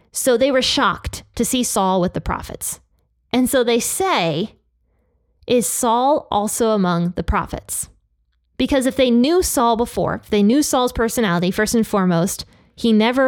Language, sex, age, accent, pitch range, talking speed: English, female, 20-39, American, 185-245 Hz, 165 wpm